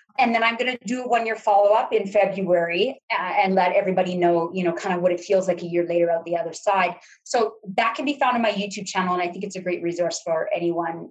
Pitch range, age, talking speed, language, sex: 180-250 Hz, 30-49, 270 wpm, English, female